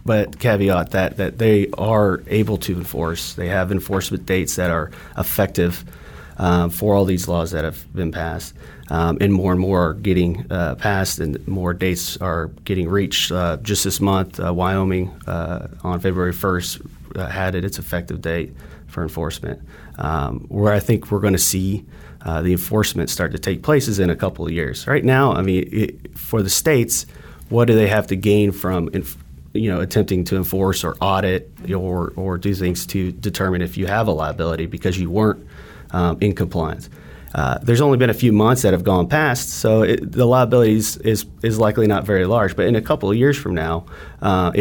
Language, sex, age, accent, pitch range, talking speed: English, male, 30-49, American, 85-105 Hz, 200 wpm